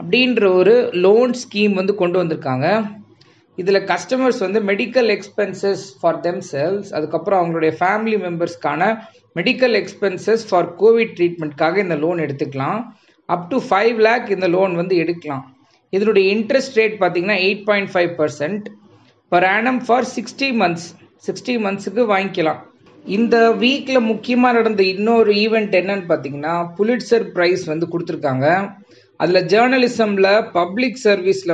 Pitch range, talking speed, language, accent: 170-215 Hz, 120 wpm, Tamil, native